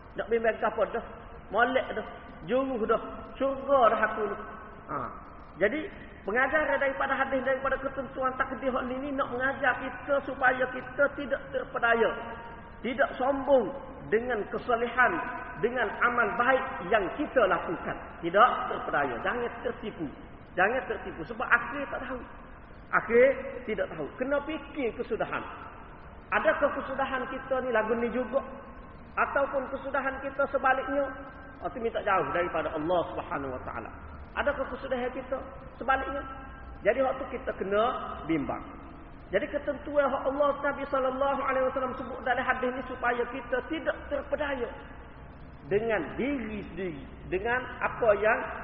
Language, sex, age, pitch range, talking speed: Malay, male, 40-59, 225-270 Hz, 125 wpm